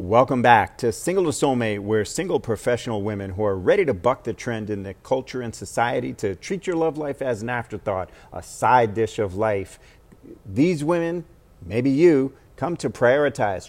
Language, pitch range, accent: English, 110-140 Hz, American